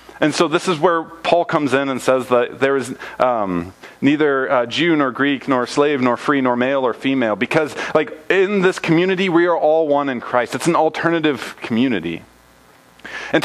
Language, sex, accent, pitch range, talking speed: English, male, American, 120-155 Hz, 190 wpm